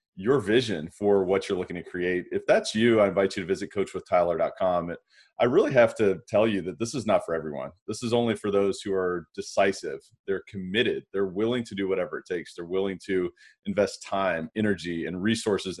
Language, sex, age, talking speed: English, male, 30-49, 205 wpm